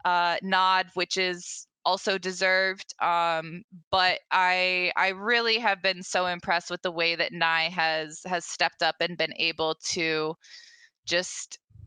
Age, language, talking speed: 20-39, English, 145 wpm